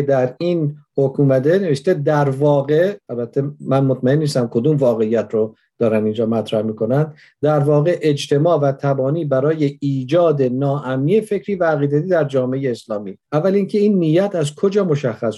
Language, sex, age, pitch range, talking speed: Persian, male, 50-69, 130-155 Hz, 145 wpm